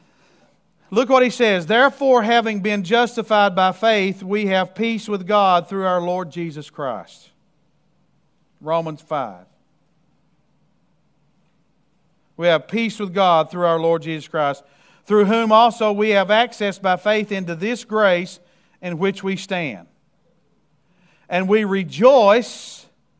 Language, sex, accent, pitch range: English, male, American, 165-210 Hz